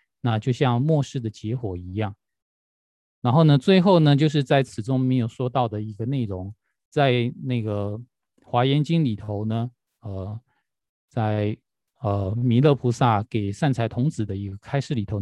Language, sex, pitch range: Chinese, male, 110-140 Hz